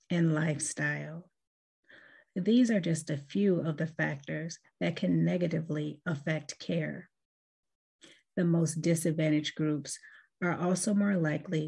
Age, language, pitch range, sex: 30-49, English, 155-185 Hz, female